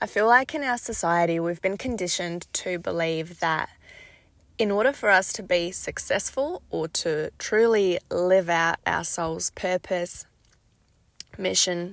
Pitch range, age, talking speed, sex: 165-200 Hz, 20-39, 140 wpm, female